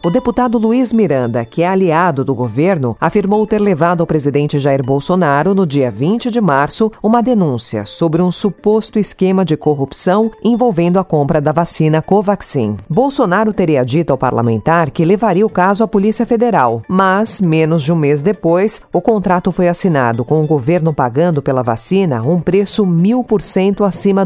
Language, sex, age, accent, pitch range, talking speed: Portuguese, female, 40-59, Brazilian, 150-205 Hz, 170 wpm